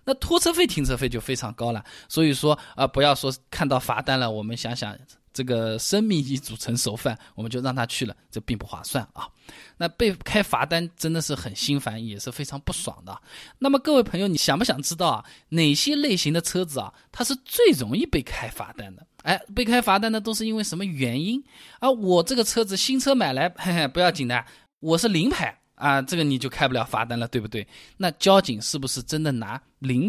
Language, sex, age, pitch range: Chinese, male, 20-39, 125-185 Hz